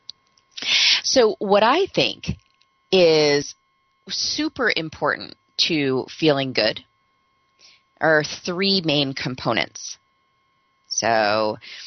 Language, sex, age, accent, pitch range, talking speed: English, female, 30-49, American, 120-185 Hz, 75 wpm